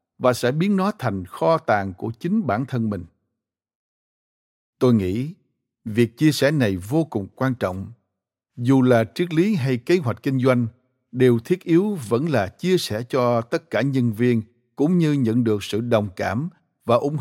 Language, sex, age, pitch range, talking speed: Vietnamese, male, 60-79, 105-135 Hz, 180 wpm